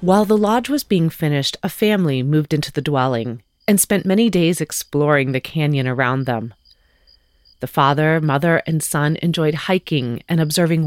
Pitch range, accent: 120-170 Hz, American